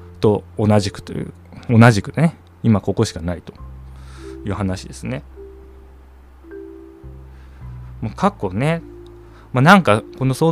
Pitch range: 85-115 Hz